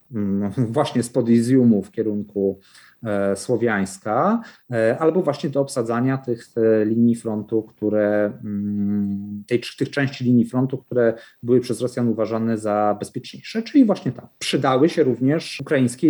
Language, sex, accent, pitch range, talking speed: Polish, male, native, 105-140 Hz, 140 wpm